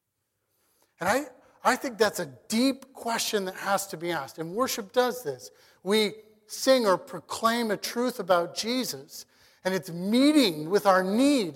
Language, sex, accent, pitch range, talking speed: English, male, American, 175-245 Hz, 160 wpm